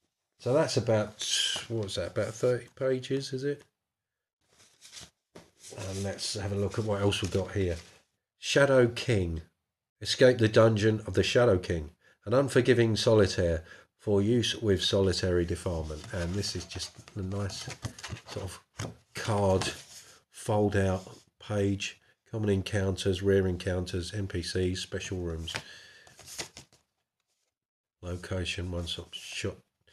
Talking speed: 120 wpm